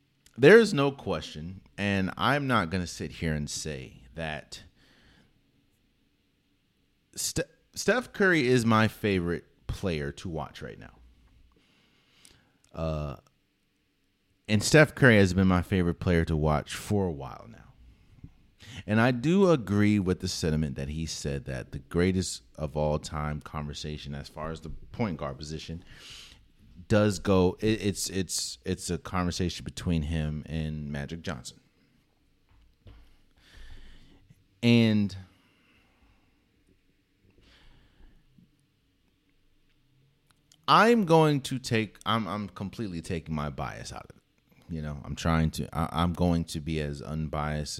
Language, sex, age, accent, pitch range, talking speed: English, male, 30-49, American, 75-105 Hz, 130 wpm